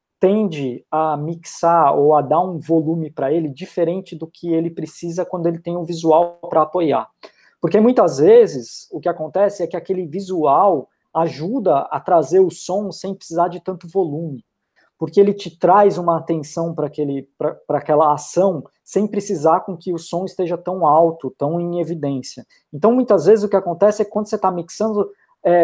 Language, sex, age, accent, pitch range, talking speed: Portuguese, male, 20-39, Brazilian, 160-200 Hz, 185 wpm